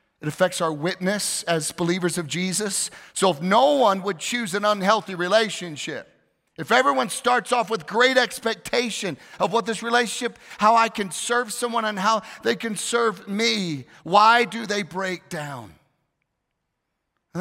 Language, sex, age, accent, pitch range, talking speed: English, male, 40-59, American, 160-215 Hz, 155 wpm